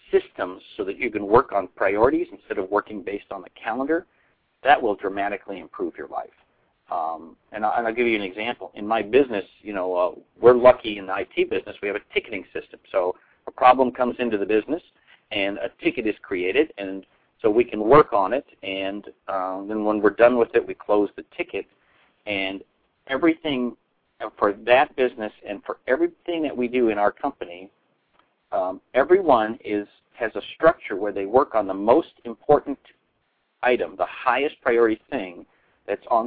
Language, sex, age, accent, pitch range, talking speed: English, male, 50-69, American, 105-155 Hz, 180 wpm